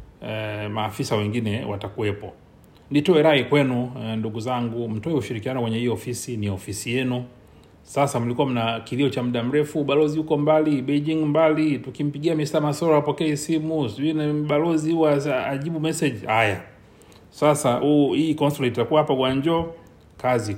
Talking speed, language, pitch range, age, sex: 130 wpm, Swahili, 105-145 Hz, 30-49, male